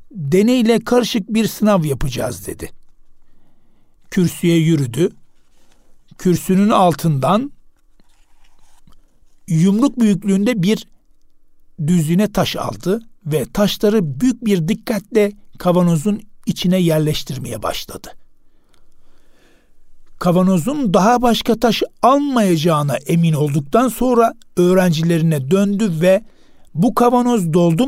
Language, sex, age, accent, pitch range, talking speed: Turkish, male, 60-79, native, 165-220 Hz, 85 wpm